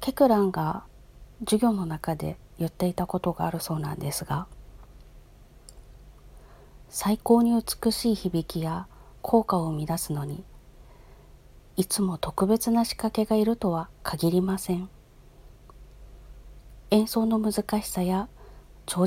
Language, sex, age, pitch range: Japanese, female, 40-59, 165-220 Hz